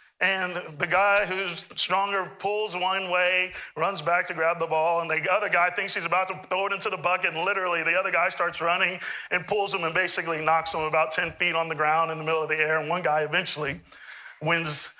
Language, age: English, 40-59